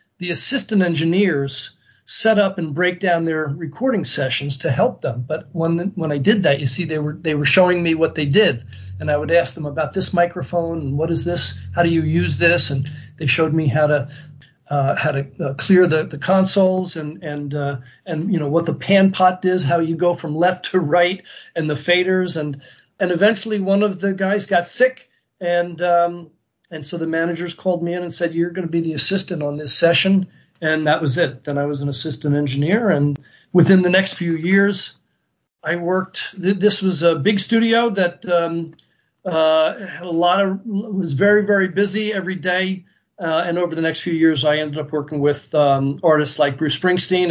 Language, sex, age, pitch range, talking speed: English, male, 50-69, 150-185 Hz, 210 wpm